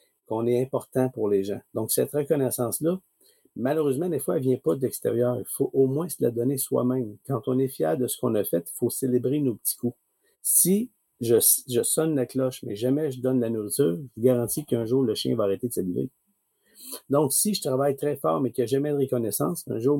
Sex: male